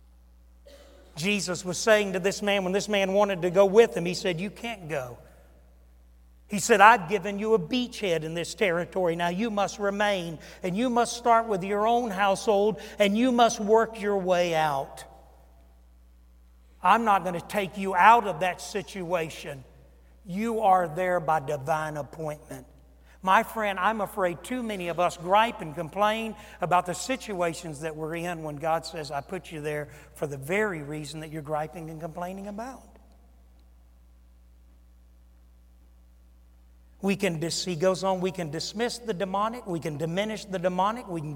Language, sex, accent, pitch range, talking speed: English, male, American, 145-200 Hz, 165 wpm